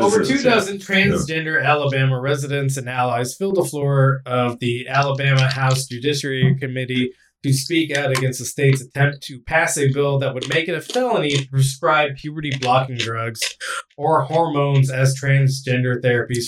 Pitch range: 130-155 Hz